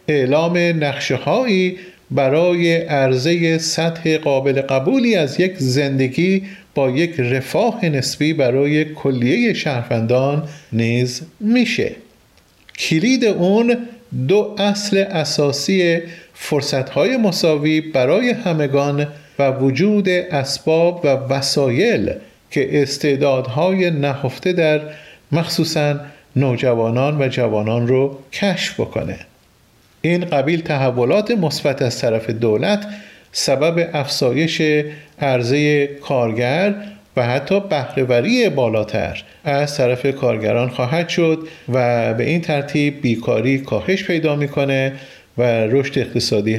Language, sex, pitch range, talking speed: Persian, male, 130-170 Hz, 100 wpm